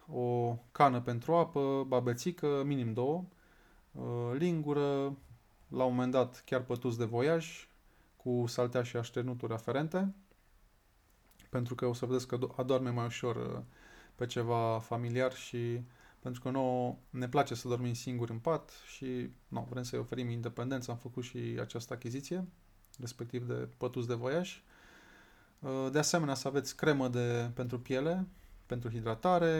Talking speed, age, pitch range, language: 140 wpm, 20-39, 120-145 Hz, Romanian